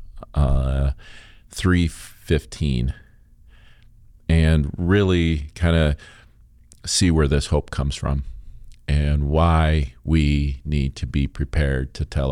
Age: 40-59